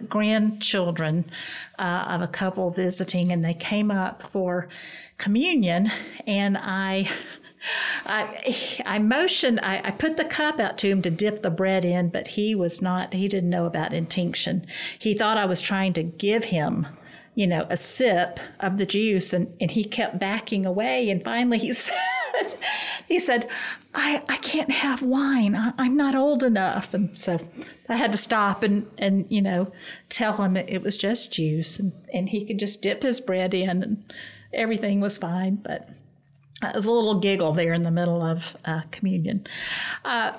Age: 50-69